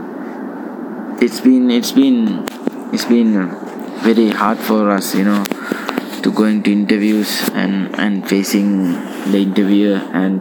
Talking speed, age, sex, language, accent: 125 wpm, 20-39, male, English, Indian